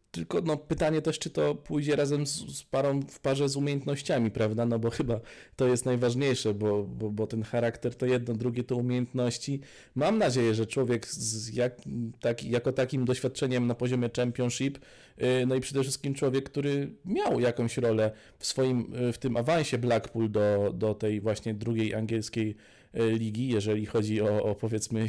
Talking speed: 165 wpm